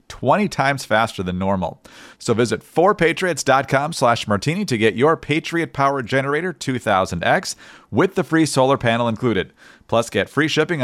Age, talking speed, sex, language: 40-59, 140 wpm, male, English